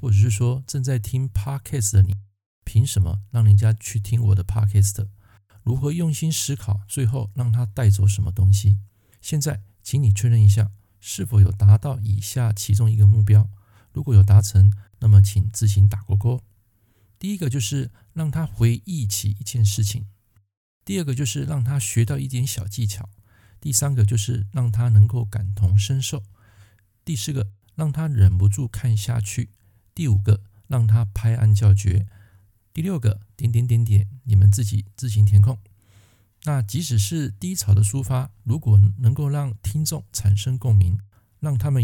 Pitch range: 100-125 Hz